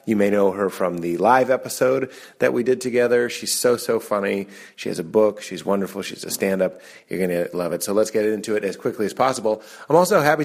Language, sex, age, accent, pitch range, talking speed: English, male, 30-49, American, 95-115 Hz, 240 wpm